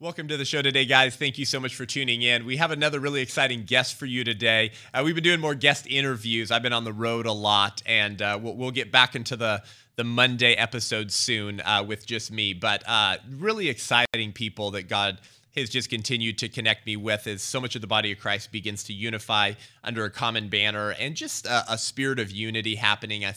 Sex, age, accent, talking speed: male, 20-39, American, 230 wpm